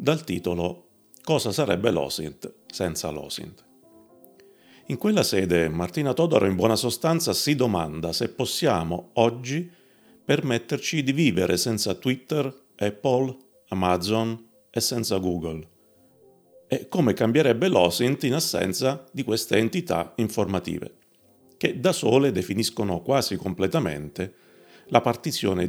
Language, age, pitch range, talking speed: Italian, 40-59, 90-130 Hz, 110 wpm